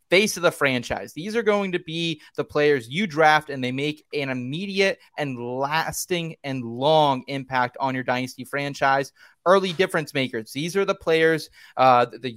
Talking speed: 175 wpm